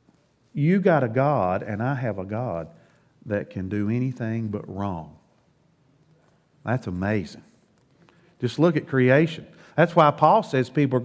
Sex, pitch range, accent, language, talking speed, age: male, 115-155 Hz, American, English, 145 wpm, 50-69